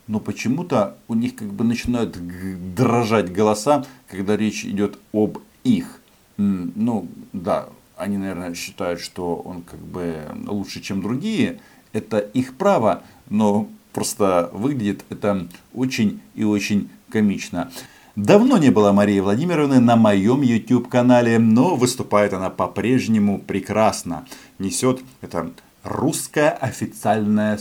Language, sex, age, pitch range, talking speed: Russian, male, 50-69, 90-120 Hz, 115 wpm